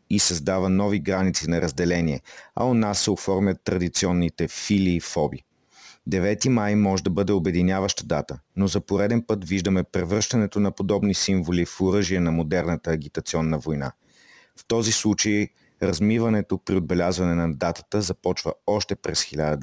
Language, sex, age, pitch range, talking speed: Bulgarian, male, 40-59, 85-105 Hz, 145 wpm